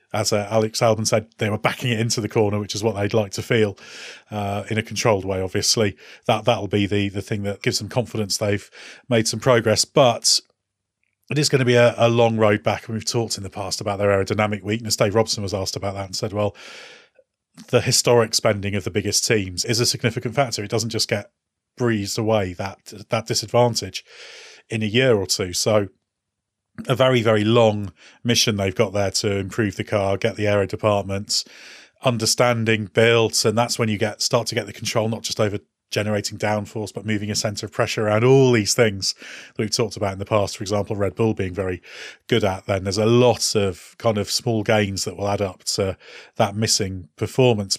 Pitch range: 100-120 Hz